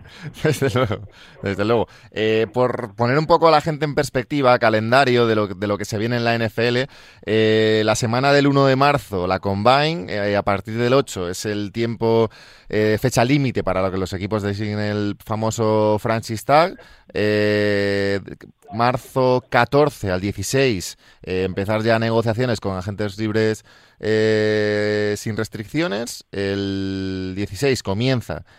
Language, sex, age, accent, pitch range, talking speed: Spanish, male, 30-49, Spanish, 100-130 Hz, 155 wpm